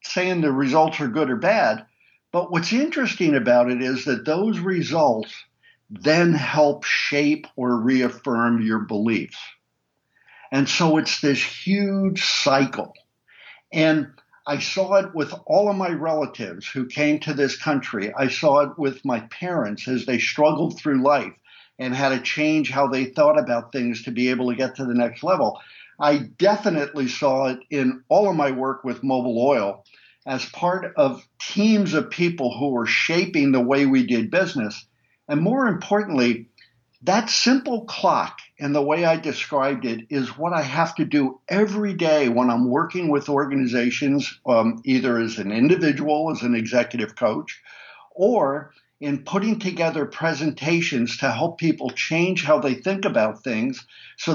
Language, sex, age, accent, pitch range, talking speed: English, male, 50-69, American, 130-175 Hz, 160 wpm